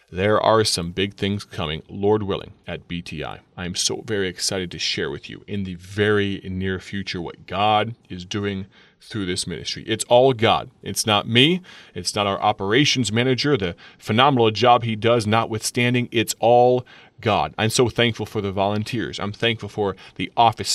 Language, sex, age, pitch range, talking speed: English, male, 30-49, 100-120 Hz, 180 wpm